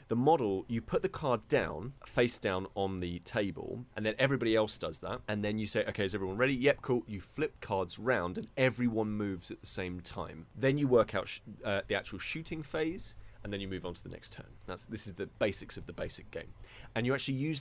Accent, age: British, 30-49